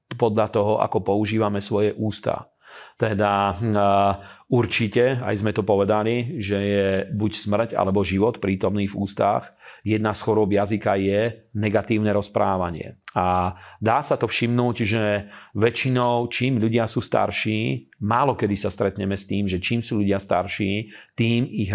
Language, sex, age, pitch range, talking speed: Slovak, male, 40-59, 100-110 Hz, 145 wpm